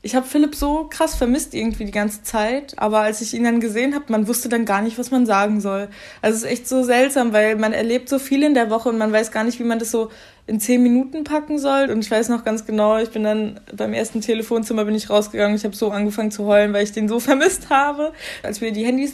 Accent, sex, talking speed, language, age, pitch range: German, female, 265 wpm, German, 20-39, 215-260 Hz